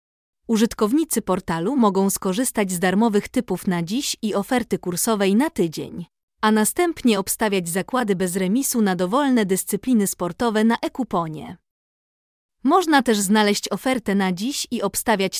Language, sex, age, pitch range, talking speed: Polish, female, 20-39, 190-245 Hz, 135 wpm